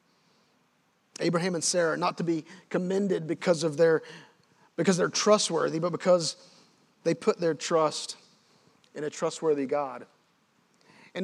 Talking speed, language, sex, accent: 130 wpm, English, male, American